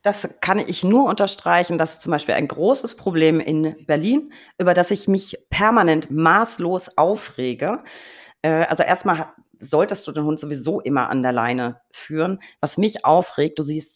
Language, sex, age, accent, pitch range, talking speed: German, female, 40-59, German, 140-180 Hz, 165 wpm